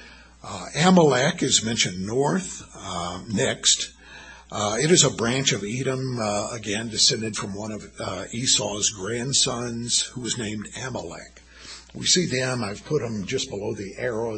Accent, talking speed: American, 155 wpm